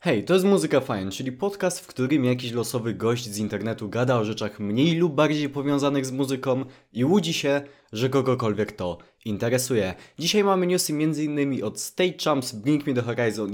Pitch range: 115-155 Hz